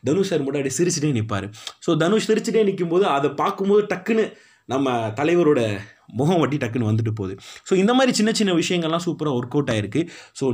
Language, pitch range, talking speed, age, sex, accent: Tamil, 115-170 Hz, 165 wpm, 20-39, male, native